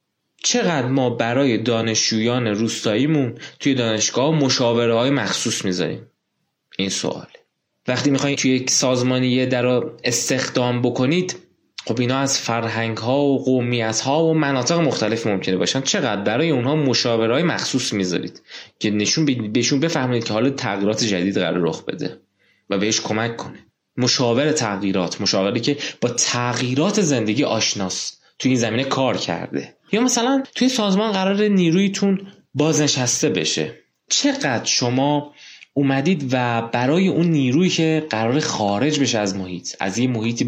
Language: Persian